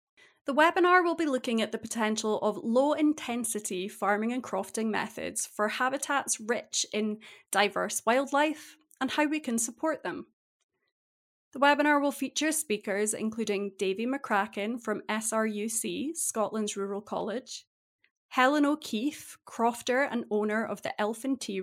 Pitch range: 210-280 Hz